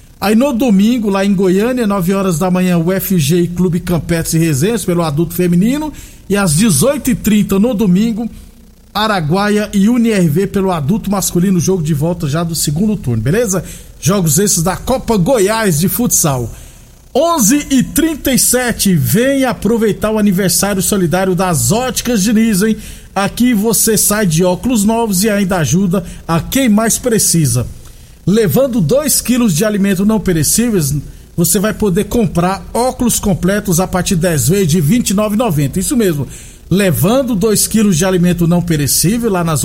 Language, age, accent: Portuguese, 50-69, Brazilian